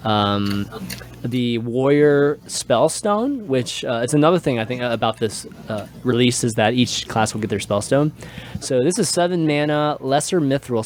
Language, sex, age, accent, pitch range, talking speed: English, male, 20-39, American, 105-145 Hz, 160 wpm